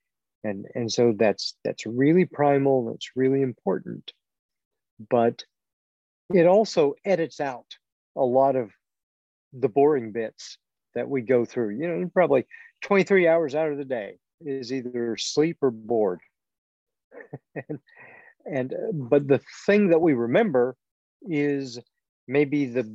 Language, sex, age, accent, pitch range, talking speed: English, male, 50-69, American, 115-150 Hz, 130 wpm